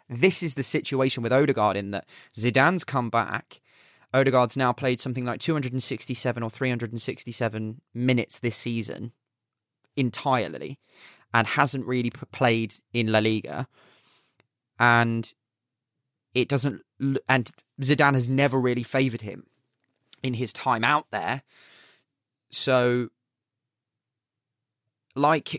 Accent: British